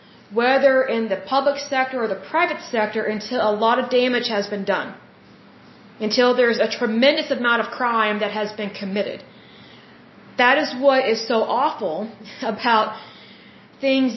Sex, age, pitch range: female, 30-49, 210-255 Hz